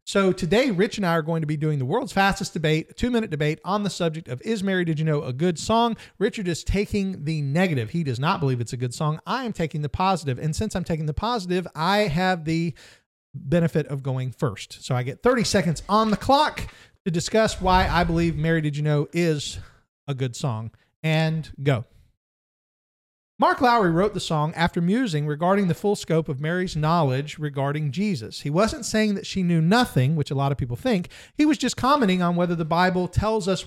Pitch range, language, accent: 150-195 Hz, English, American